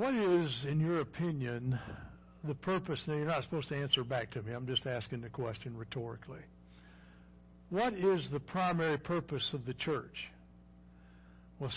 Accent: American